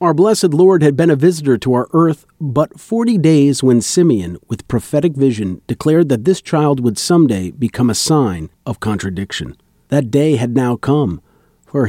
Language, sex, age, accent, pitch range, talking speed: English, male, 40-59, American, 110-155 Hz, 175 wpm